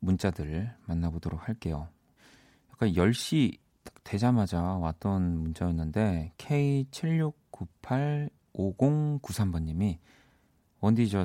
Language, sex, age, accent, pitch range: Korean, male, 40-59, native, 85-115 Hz